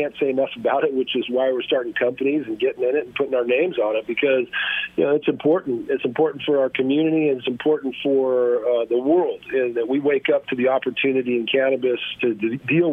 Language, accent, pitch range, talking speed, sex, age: English, American, 125-165 Hz, 230 wpm, male, 50-69